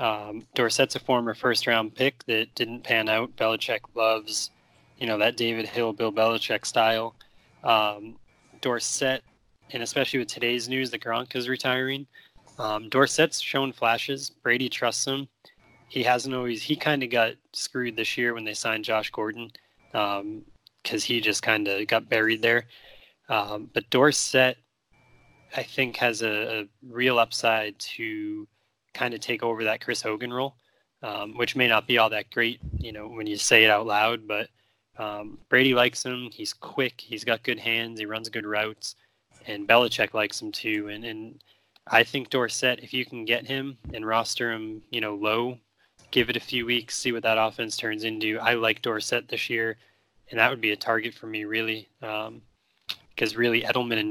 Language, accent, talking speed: English, American, 180 wpm